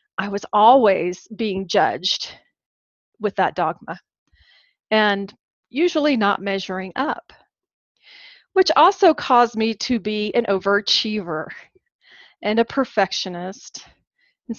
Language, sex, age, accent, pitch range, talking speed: English, female, 30-49, American, 200-260 Hz, 105 wpm